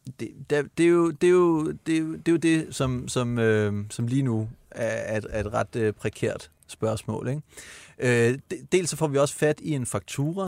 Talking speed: 175 wpm